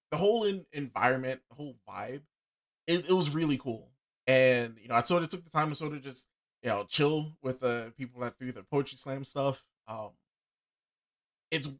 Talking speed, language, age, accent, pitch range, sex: 205 wpm, English, 20-39, American, 120-145 Hz, male